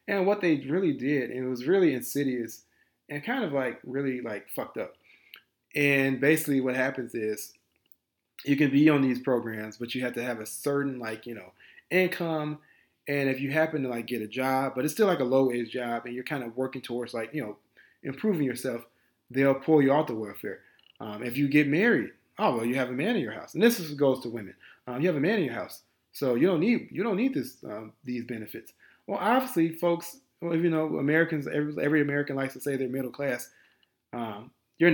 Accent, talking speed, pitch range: American, 225 wpm, 115-145 Hz